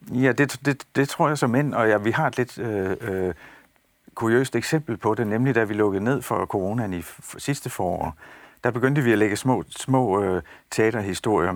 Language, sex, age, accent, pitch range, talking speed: Danish, male, 60-79, native, 100-125 Hz, 210 wpm